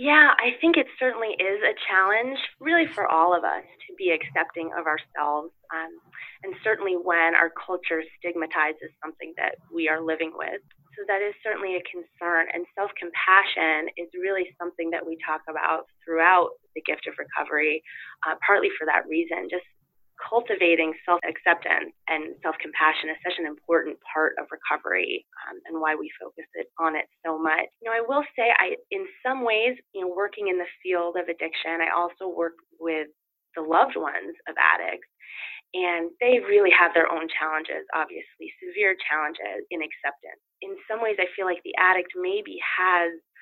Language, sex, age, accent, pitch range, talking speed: English, female, 20-39, American, 165-215 Hz, 175 wpm